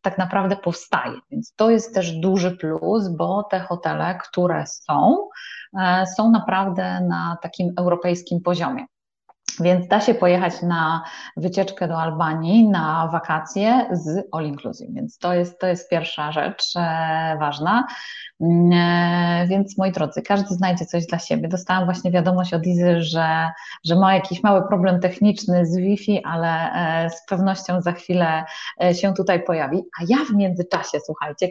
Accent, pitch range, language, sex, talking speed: native, 175-215 Hz, Polish, female, 140 wpm